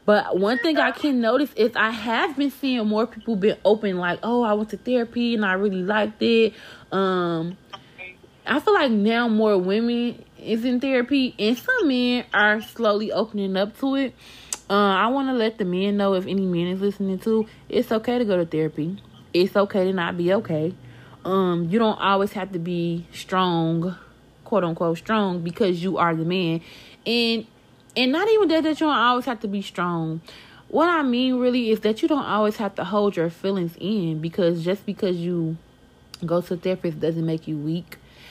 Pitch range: 170-220 Hz